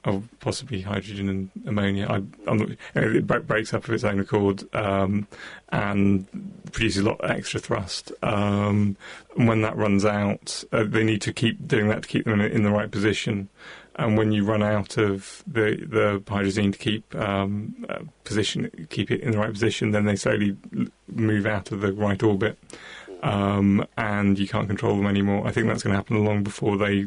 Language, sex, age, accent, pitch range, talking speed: English, male, 30-49, British, 100-110 Hz, 180 wpm